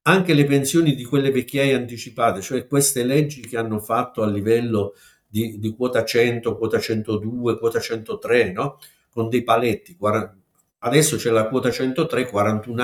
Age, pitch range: 50-69, 105-140 Hz